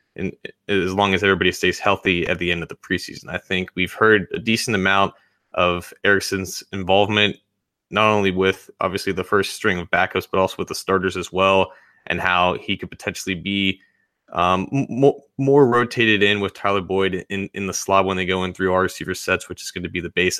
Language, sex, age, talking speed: English, male, 20-39, 210 wpm